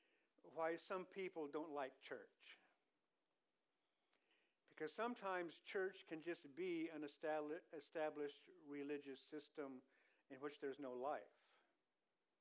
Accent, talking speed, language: American, 100 wpm, English